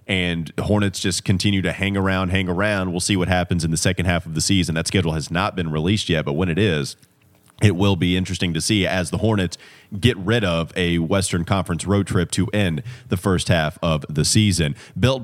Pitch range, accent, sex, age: 95-115 Hz, American, male, 30-49